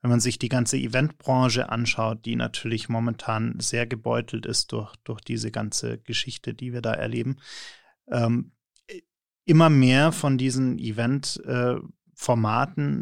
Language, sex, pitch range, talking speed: German, male, 115-130 Hz, 135 wpm